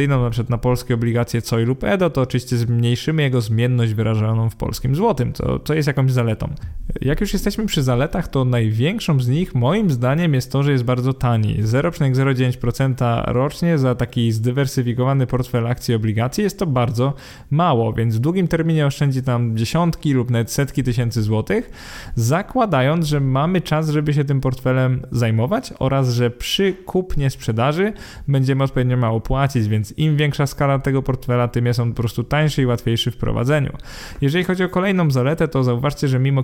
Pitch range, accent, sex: 120-145 Hz, native, male